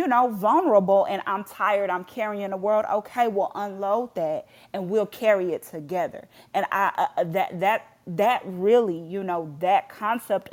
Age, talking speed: 30-49, 170 wpm